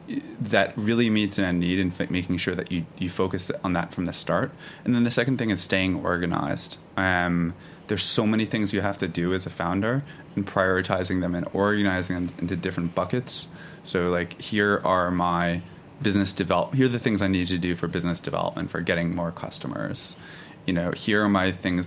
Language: English